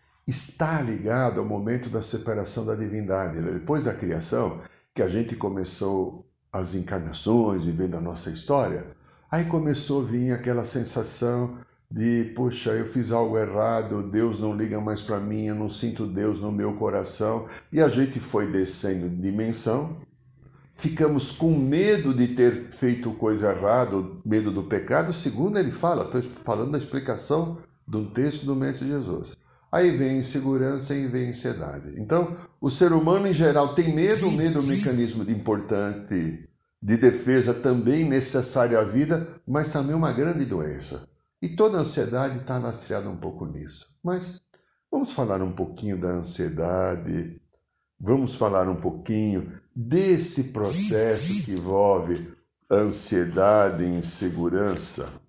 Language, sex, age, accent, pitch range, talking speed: Portuguese, male, 60-79, Brazilian, 100-140 Hz, 145 wpm